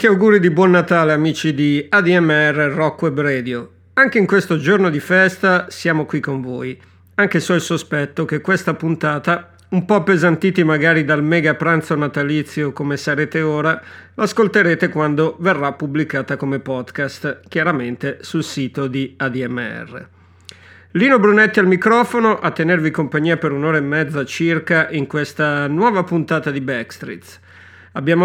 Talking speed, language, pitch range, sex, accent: 145 wpm, Italian, 140-180 Hz, male, native